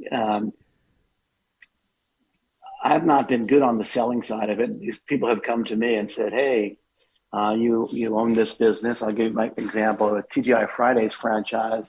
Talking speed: 185 wpm